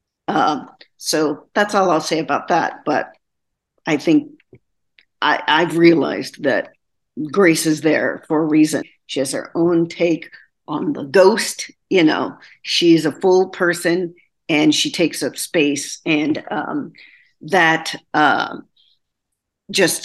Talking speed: 140 wpm